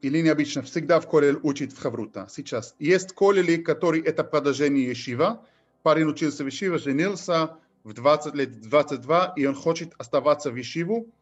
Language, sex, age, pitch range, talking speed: Russian, male, 40-59, 135-170 Hz, 160 wpm